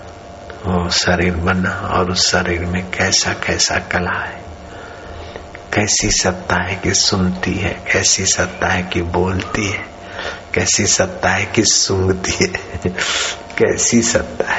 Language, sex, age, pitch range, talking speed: Hindi, male, 60-79, 90-110 Hz, 130 wpm